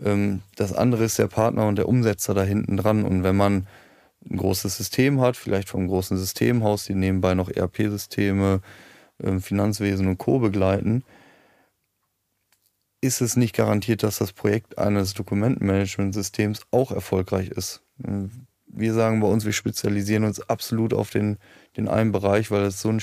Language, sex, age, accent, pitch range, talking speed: German, male, 20-39, German, 100-110 Hz, 155 wpm